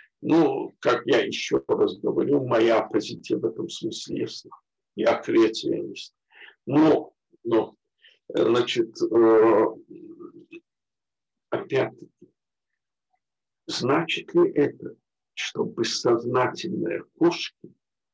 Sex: male